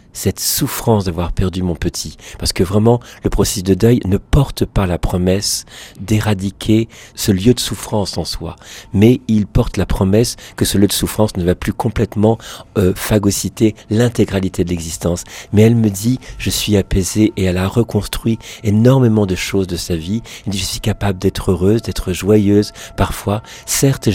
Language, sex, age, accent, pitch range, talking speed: French, male, 50-69, French, 90-110 Hz, 175 wpm